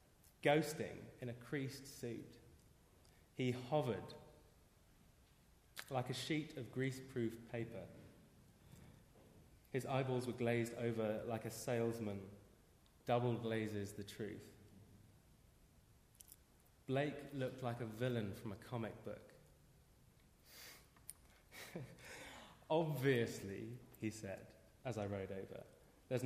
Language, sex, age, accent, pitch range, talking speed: English, male, 20-39, British, 105-130 Hz, 95 wpm